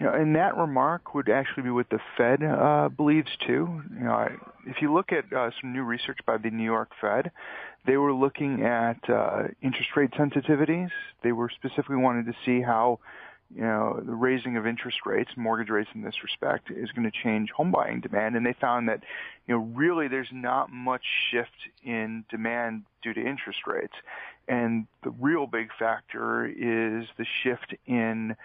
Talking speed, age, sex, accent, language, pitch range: 190 wpm, 40-59, male, American, English, 115-135 Hz